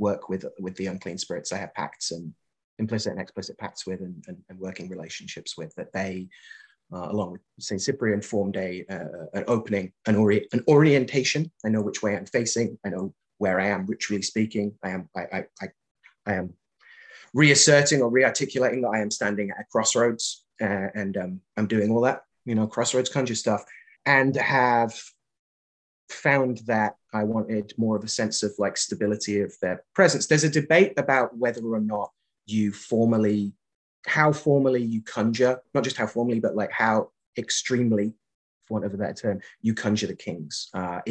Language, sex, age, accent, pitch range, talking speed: English, male, 30-49, British, 100-125 Hz, 180 wpm